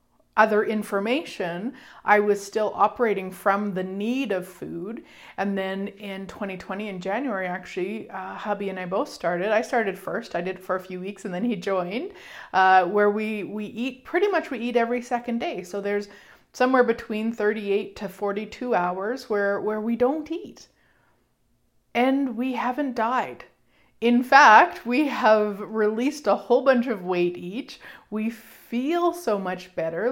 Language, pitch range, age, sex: English, 185-240 Hz, 30-49, female